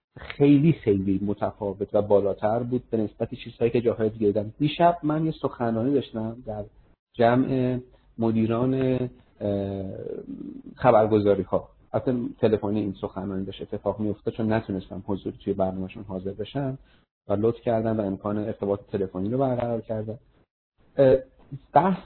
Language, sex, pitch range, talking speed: Persian, male, 105-140 Hz, 130 wpm